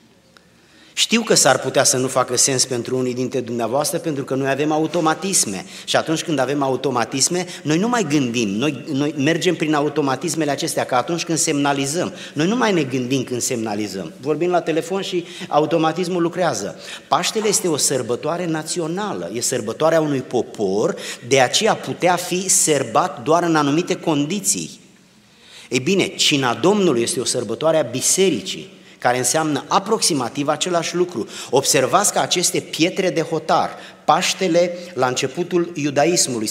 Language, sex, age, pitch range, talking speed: Romanian, male, 30-49, 135-175 Hz, 150 wpm